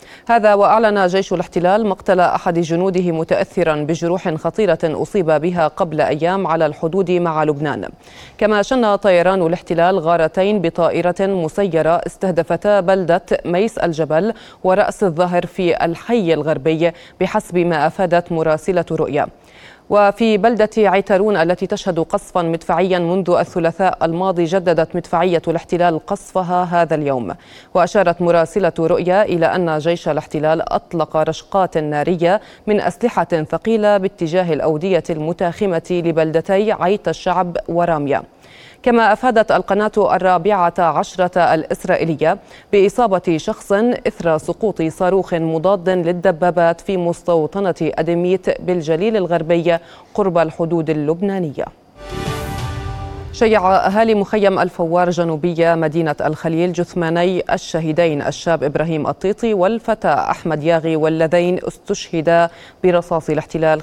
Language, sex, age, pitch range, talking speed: Arabic, female, 20-39, 165-190 Hz, 110 wpm